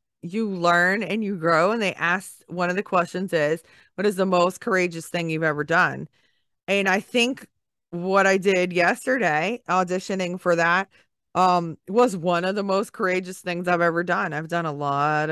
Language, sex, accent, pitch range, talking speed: English, female, American, 170-200 Hz, 185 wpm